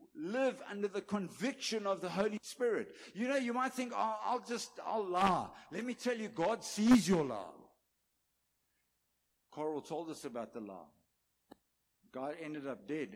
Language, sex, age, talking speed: English, male, 60-79, 165 wpm